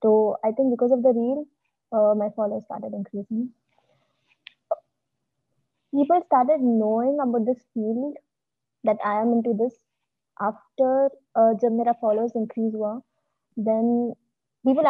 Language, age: Hindi, 20-39